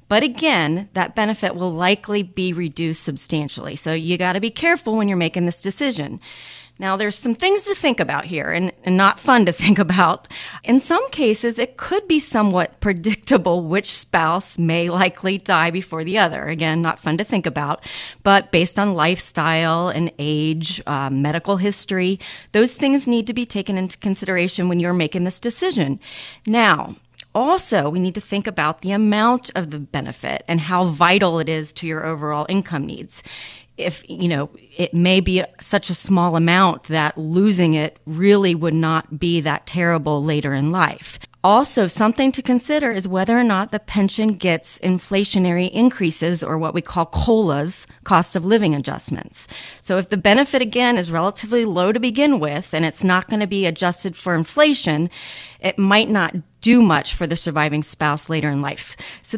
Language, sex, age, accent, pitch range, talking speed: English, female, 40-59, American, 160-210 Hz, 180 wpm